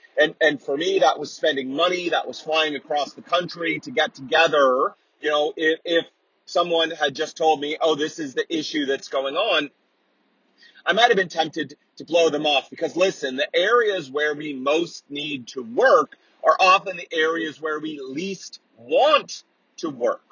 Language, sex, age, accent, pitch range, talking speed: English, male, 30-49, American, 150-195 Hz, 185 wpm